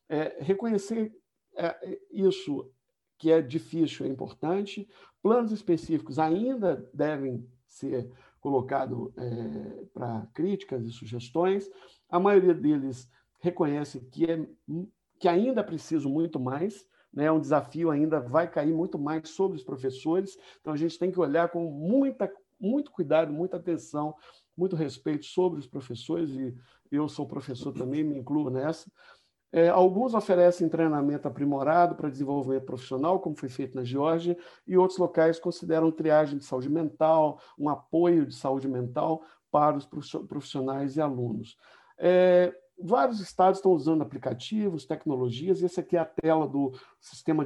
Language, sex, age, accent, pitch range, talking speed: Portuguese, male, 60-79, Brazilian, 140-180 Hz, 140 wpm